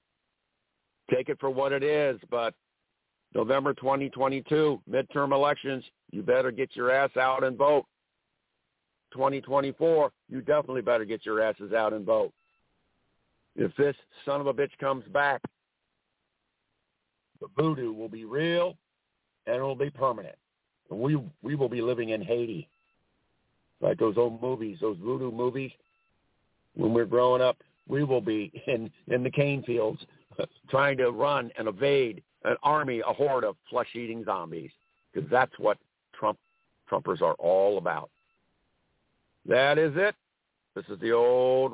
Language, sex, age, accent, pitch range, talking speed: English, male, 50-69, American, 120-145 Hz, 145 wpm